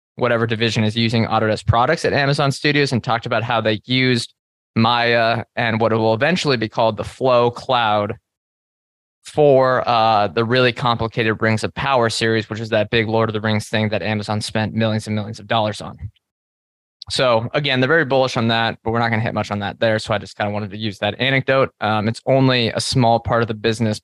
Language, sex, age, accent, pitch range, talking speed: English, male, 20-39, American, 110-130 Hz, 220 wpm